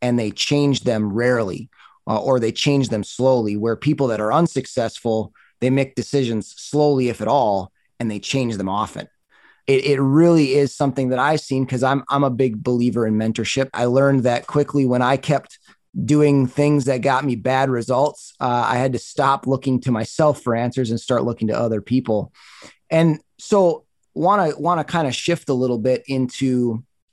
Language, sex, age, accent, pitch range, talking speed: English, male, 30-49, American, 125-145 Hz, 190 wpm